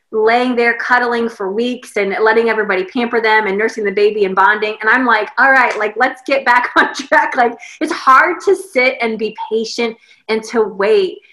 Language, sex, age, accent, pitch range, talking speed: English, female, 20-39, American, 200-250 Hz, 200 wpm